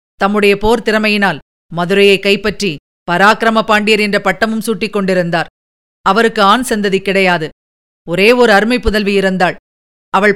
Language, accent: Tamil, native